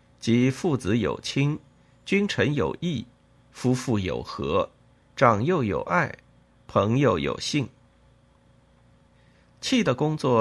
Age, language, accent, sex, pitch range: 50-69, Chinese, native, male, 100-145 Hz